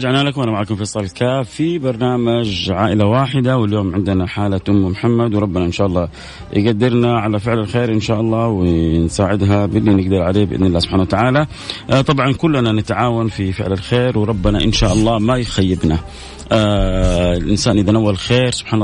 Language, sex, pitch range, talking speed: English, male, 95-115 Hz, 165 wpm